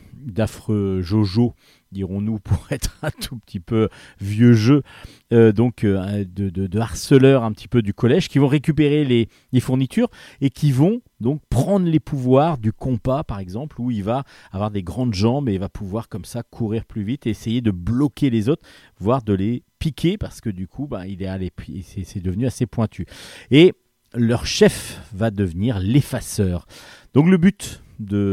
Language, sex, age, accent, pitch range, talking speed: French, male, 40-59, French, 105-140 Hz, 190 wpm